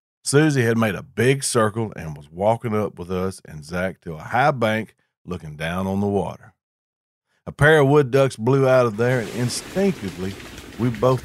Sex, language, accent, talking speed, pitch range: male, English, American, 190 wpm, 100-140 Hz